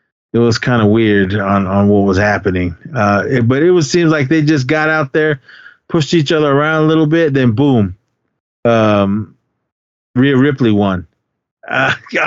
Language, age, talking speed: English, 30-49, 170 wpm